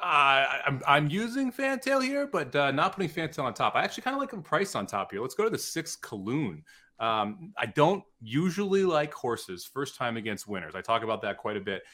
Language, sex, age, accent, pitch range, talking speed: English, male, 30-49, American, 115-155 Hz, 225 wpm